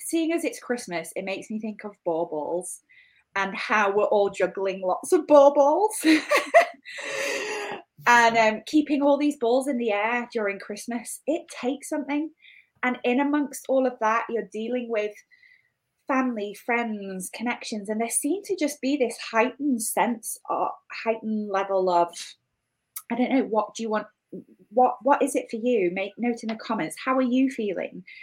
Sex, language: female, English